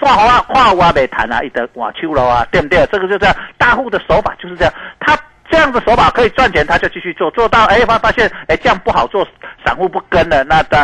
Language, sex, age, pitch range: Chinese, male, 50-69, 170-250 Hz